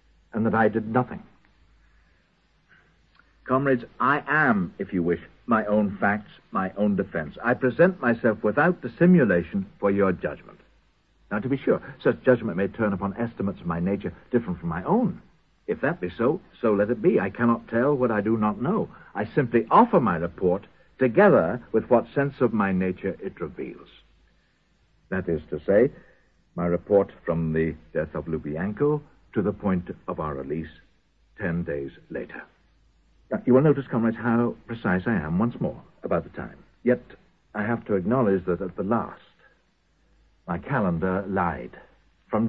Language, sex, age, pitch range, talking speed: English, male, 60-79, 90-125 Hz, 170 wpm